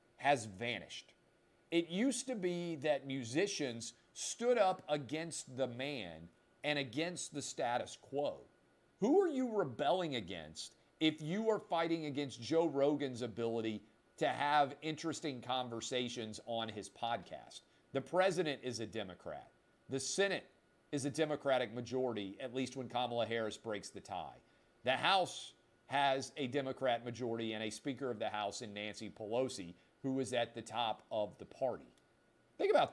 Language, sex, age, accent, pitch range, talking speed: English, male, 50-69, American, 115-160 Hz, 150 wpm